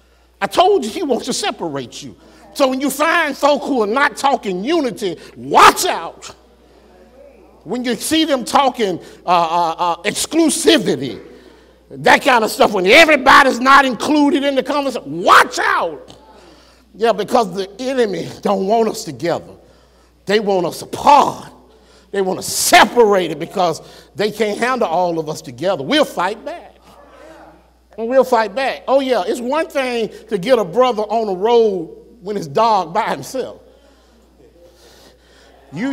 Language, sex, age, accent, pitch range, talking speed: English, male, 50-69, American, 210-330 Hz, 155 wpm